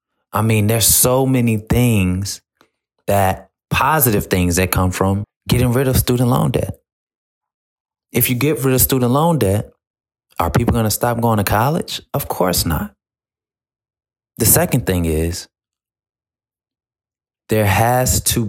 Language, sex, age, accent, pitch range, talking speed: English, male, 20-39, American, 90-115 Hz, 145 wpm